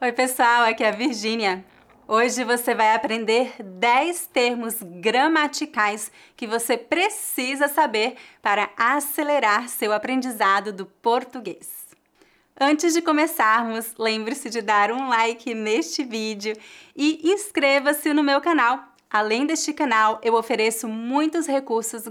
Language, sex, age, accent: English, female, 20-39, Brazilian